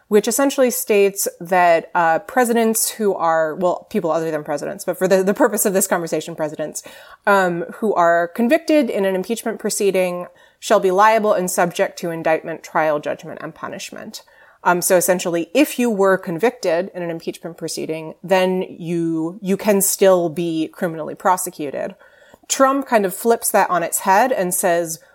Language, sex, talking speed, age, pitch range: English, female, 165 wpm, 30-49, 170-210 Hz